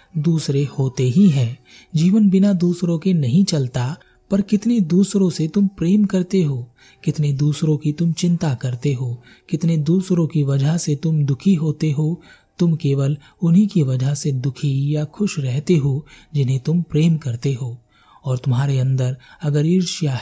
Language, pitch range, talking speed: Hindi, 130-170 Hz, 165 wpm